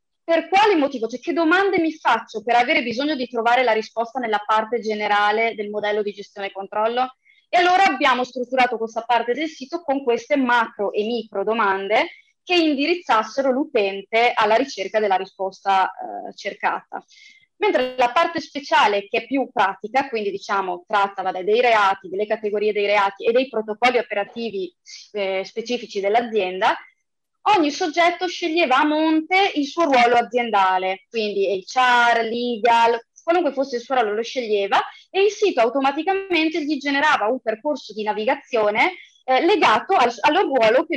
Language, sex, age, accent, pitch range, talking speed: Italian, female, 20-39, native, 210-300 Hz, 155 wpm